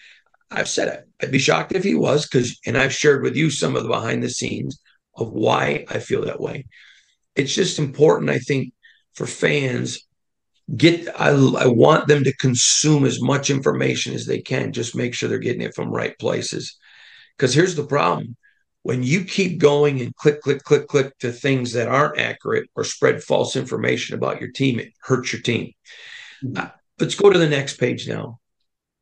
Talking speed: 190 wpm